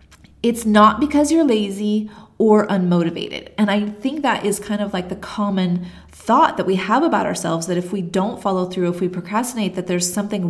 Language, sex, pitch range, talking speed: English, female, 185-230 Hz, 200 wpm